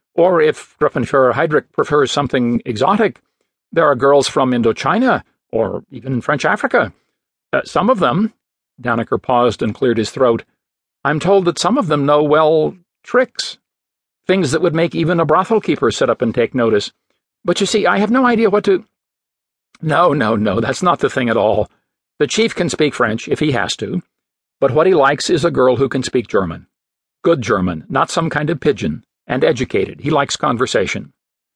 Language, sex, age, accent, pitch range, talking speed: English, male, 60-79, American, 120-185 Hz, 185 wpm